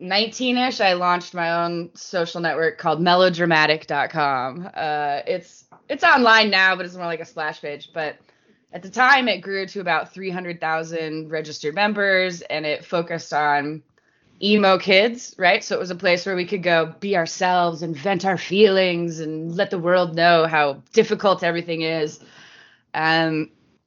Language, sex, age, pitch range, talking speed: English, female, 20-39, 160-200 Hz, 160 wpm